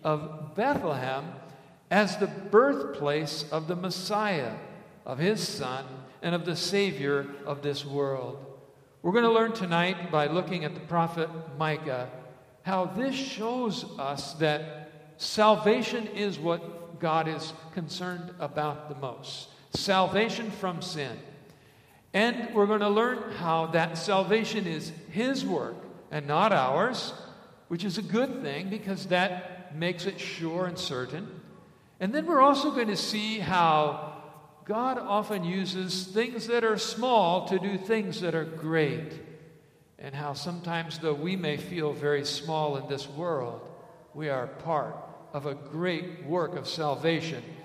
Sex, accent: male, American